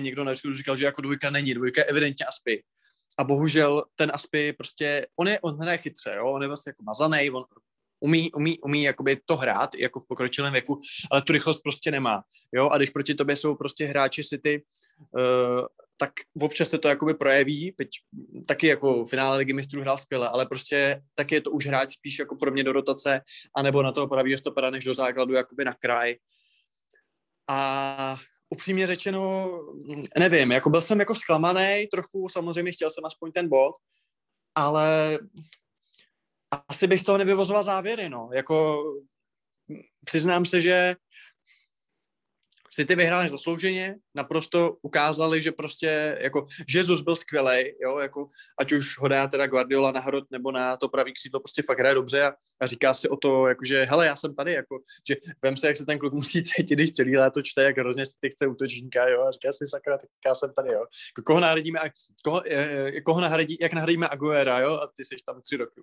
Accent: native